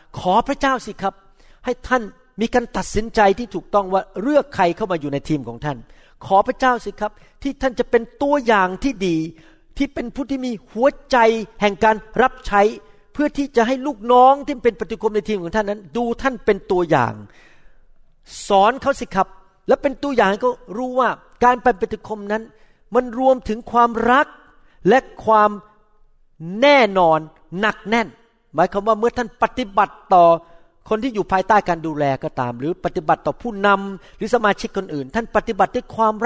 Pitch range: 180-240 Hz